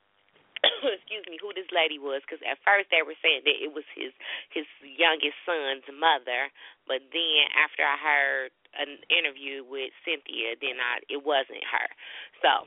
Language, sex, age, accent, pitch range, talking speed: English, female, 20-39, American, 135-180 Hz, 165 wpm